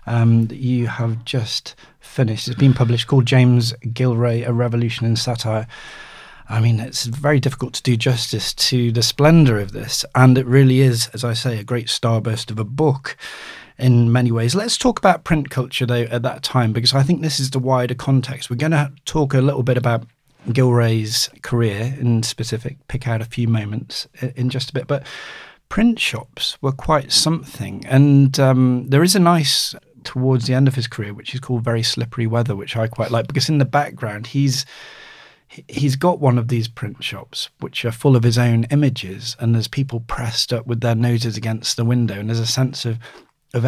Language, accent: English, British